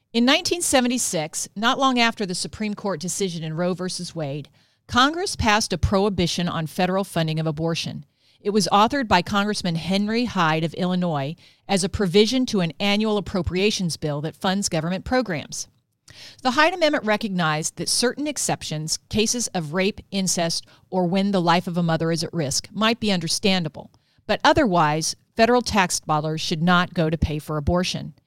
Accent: American